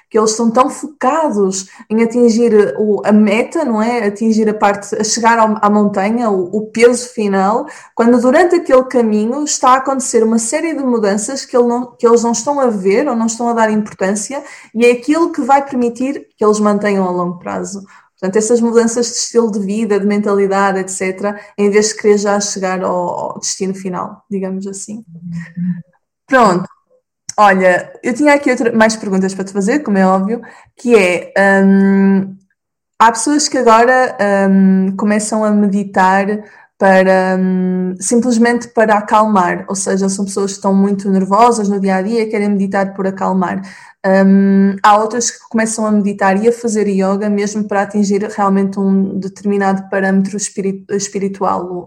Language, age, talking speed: Portuguese, 20-39, 165 wpm